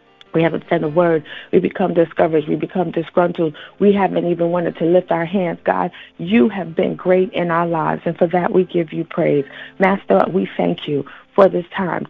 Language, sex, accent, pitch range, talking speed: English, female, American, 165-190 Hz, 205 wpm